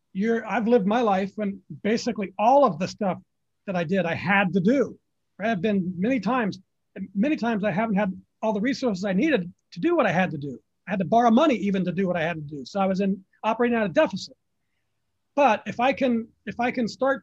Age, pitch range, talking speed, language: 40-59, 190-235 Hz, 240 wpm, English